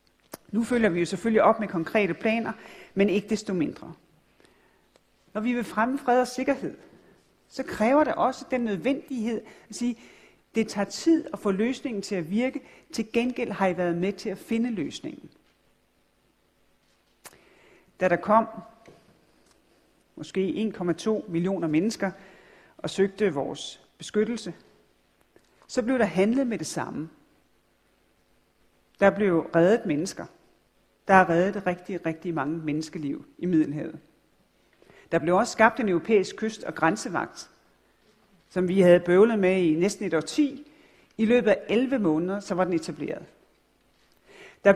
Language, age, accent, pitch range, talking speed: Danish, 40-59, native, 175-225 Hz, 140 wpm